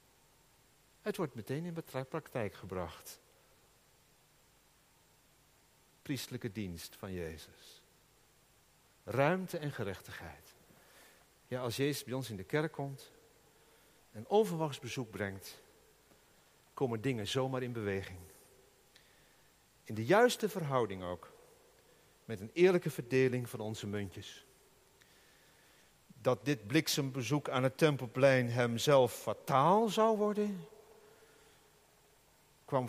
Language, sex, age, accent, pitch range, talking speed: Dutch, male, 50-69, Dutch, 105-150 Hz, 95 wpm